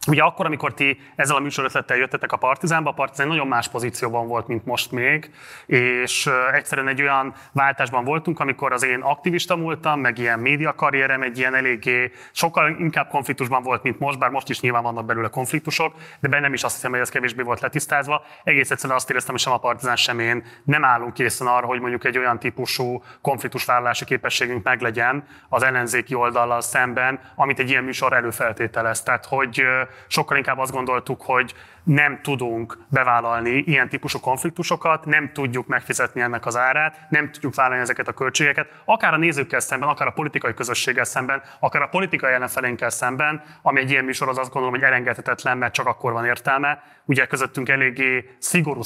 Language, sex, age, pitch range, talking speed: Hungarian, male, 30-49, 125-140 Hz, 180 wpm